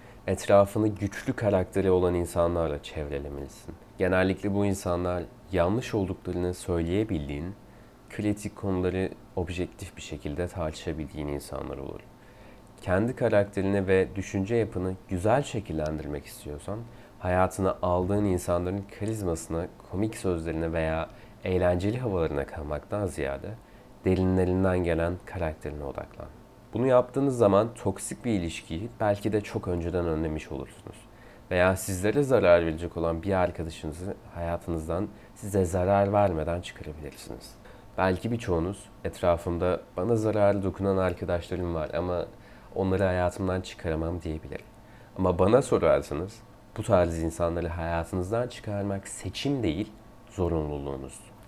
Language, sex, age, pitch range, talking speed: Turkish, male, 30-49, 85-105 Hz, 105 wpm